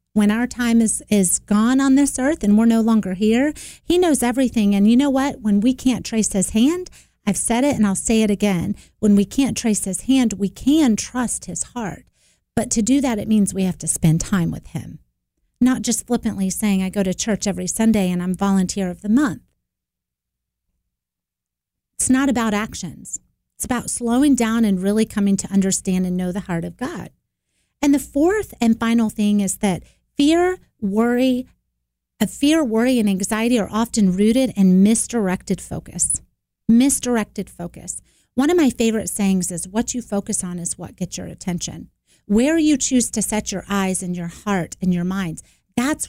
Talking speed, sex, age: 190 wpm, female, 30-49